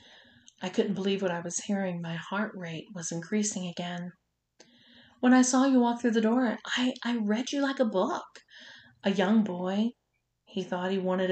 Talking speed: 185 wpm